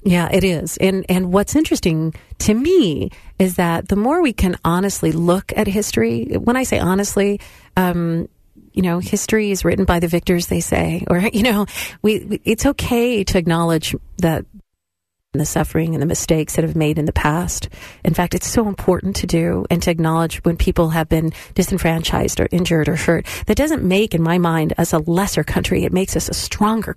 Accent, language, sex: American, English, female